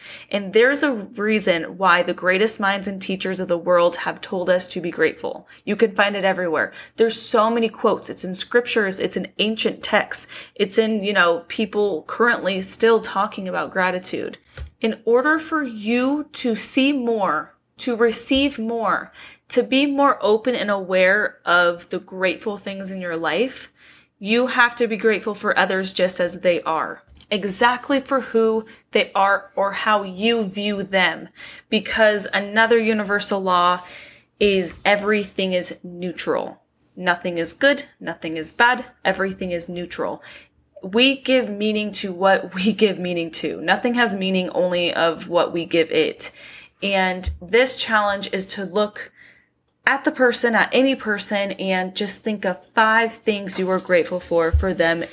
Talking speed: 160 wpm